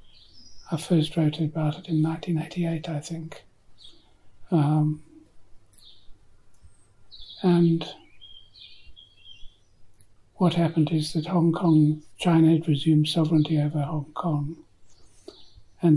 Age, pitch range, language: 60-79, 105-160 Hz, English